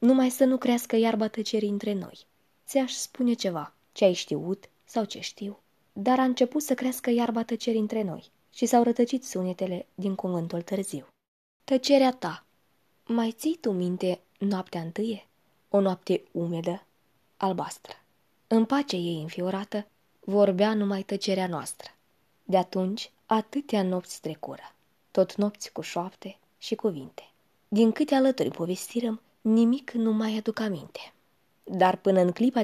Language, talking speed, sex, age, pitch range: Romanian, 140 wpm, female, 20-39, 190-240 Hz